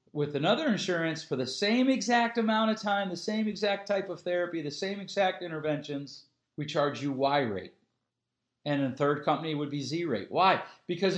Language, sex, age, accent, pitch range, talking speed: English, male, 40-59, American, 140-195 Hz, 190 wpm